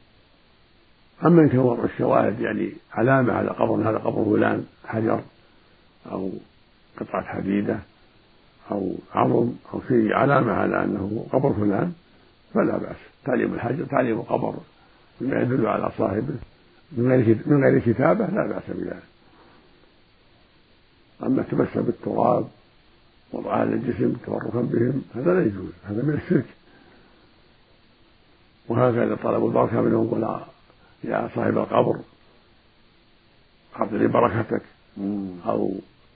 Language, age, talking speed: Arabic, 50-69, 110 wpm